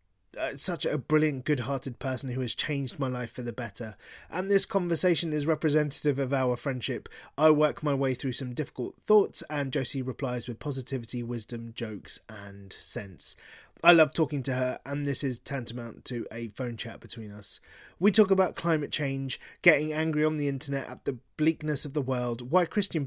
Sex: male